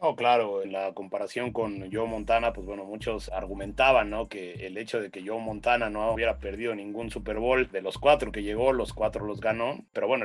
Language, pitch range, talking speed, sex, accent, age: Spanish, 105-130 Hz, 215 wpm, male, Mexican, 30-49